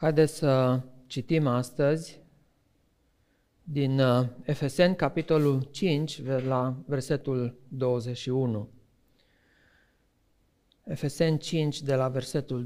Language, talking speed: Romanian, 75 wpm